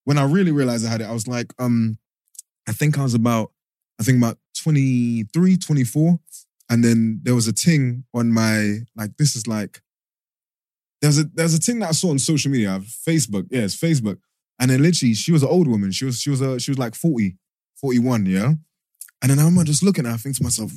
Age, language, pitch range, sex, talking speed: 20-39, English, 105-145 Hz, male, 225 wpm